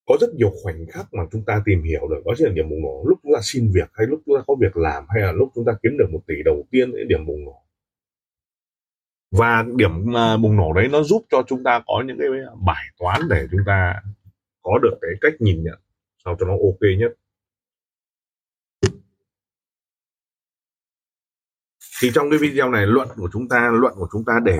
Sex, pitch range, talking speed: male, 100-155 Hz, 205 wpm